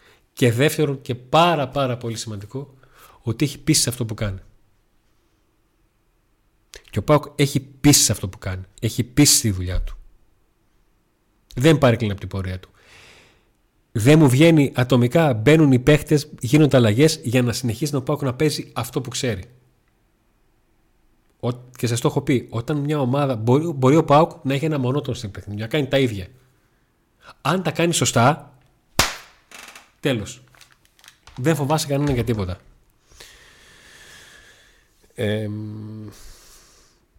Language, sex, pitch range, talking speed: Greek, male, 110-140 Hz, 140 wpm